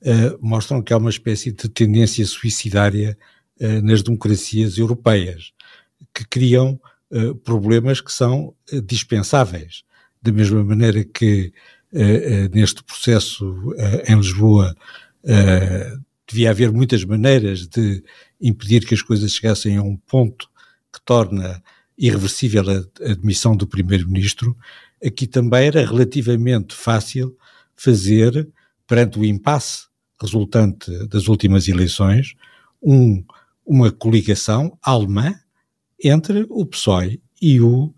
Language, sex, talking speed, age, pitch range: Portuguese, male, 105 wpm, 60-79, 105-135 Hz